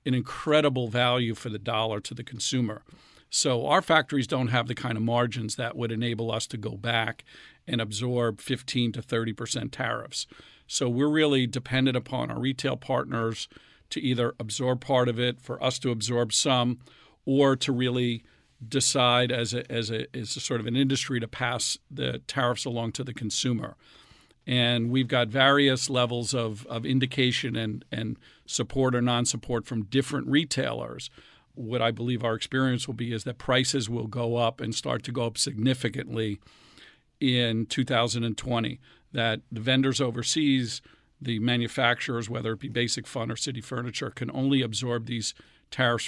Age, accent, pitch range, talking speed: 50-69, American, 115-130 Hz, 165 wpm